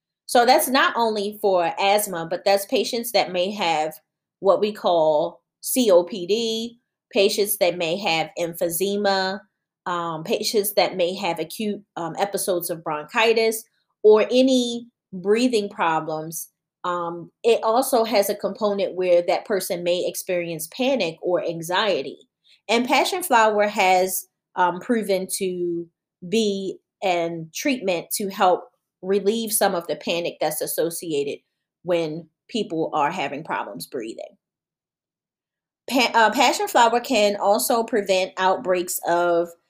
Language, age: English, 30-49